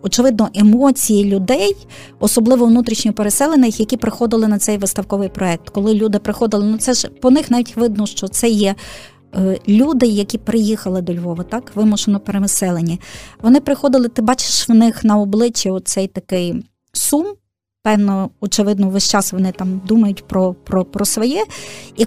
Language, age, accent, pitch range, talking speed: Ukrainian, 20-39, native, 205-245 Hz, 155 wpm